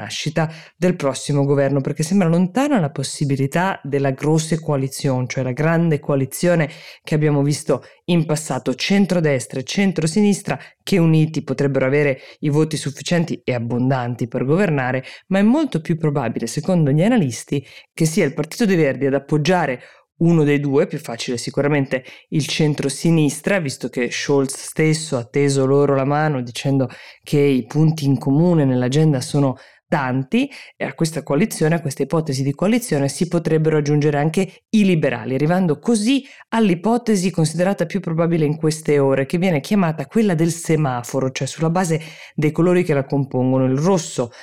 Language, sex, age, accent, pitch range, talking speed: Italian, female, 20-39, native, 135-165 Hz, 155 wpm